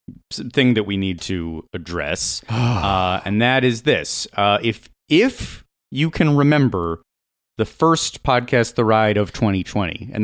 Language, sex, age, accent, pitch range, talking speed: English, male, 30-49, American, 90-120 Hz, 145 wpm